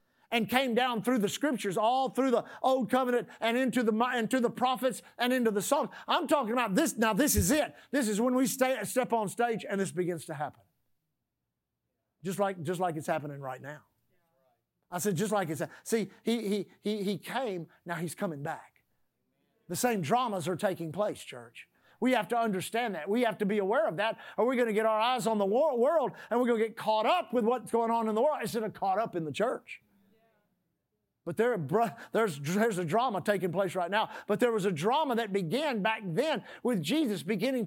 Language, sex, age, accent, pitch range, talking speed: English, male, 50-69, American, 205-255 Hz, 220 wpm